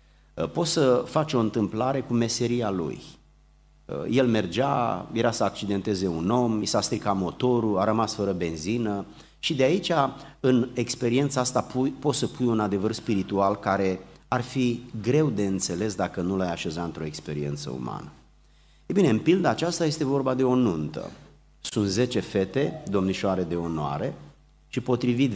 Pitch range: 95-125 Hz